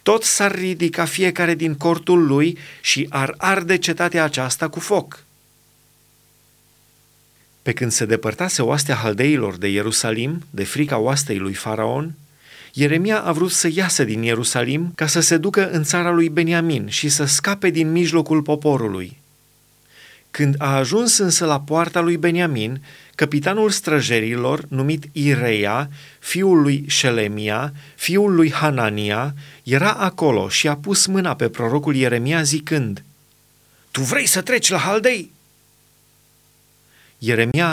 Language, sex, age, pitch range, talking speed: Romanian, male, 30-49, 125-170 Hz, 130 wpm